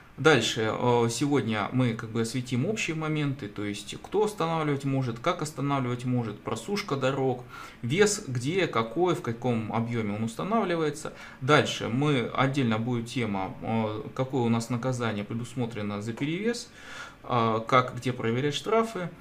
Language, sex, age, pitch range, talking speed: Russian, male, 20-39, 115-150 Hz, 130 wpm